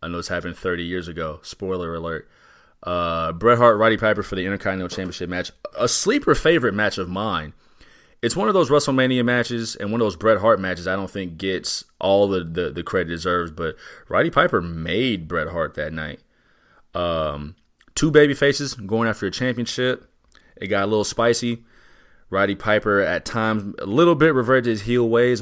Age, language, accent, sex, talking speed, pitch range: 30-49, English, American, male, 190 wpm, 85-110 Hz